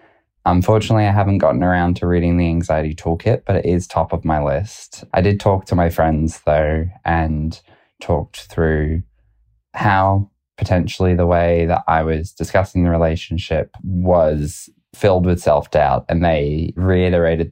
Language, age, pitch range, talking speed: English, 20-39, 80-90 Hz, 150 wpm